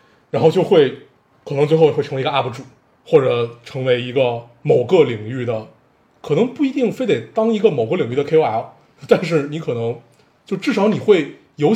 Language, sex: Chinese, male